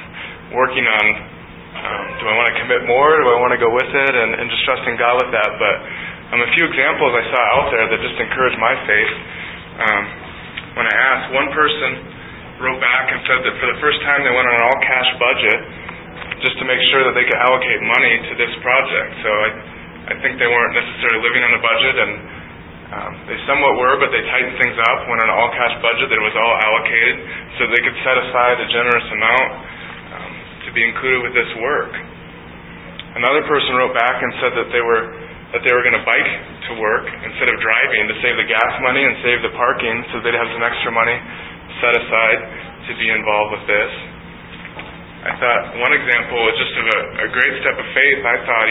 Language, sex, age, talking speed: English, male, 20-39, 210 wpm